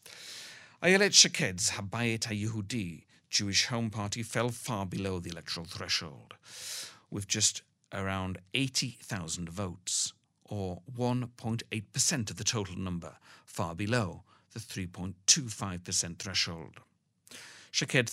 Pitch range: 95-120 Hz